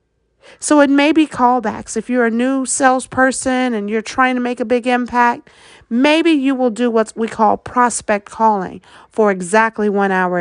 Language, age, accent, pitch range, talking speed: English, 40-59, American, 210-260 Hz, 180 wpm